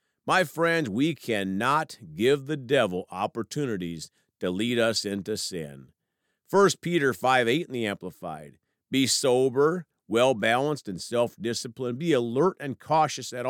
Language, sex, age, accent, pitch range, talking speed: English, male, 50-69, American, 100-155 Hz, 135 wpm